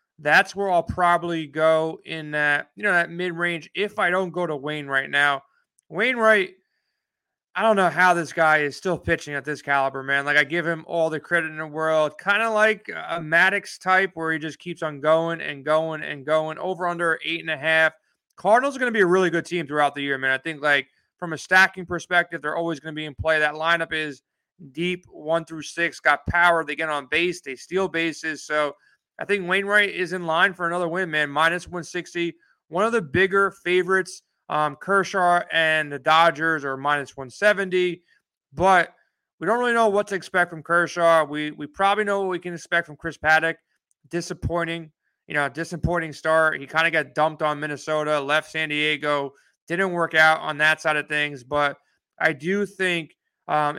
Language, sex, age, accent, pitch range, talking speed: English, male, 30-49, American, 155-180 Hz, 210 wpm